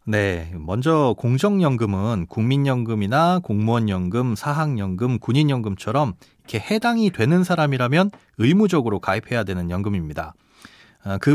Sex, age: male, 30-49